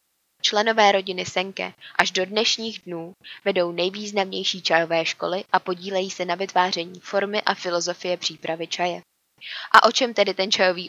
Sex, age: female, 20-39